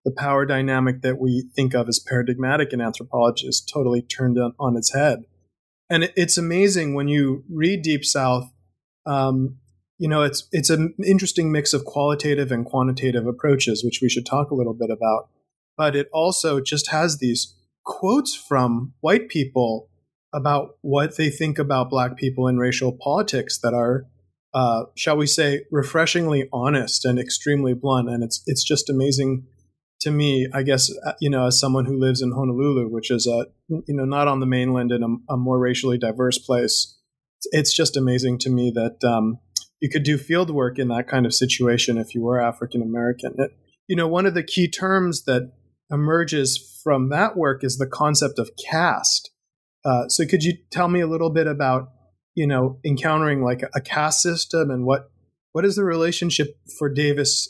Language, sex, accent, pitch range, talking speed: English, male, American, 125-150 Hz, 180 wpm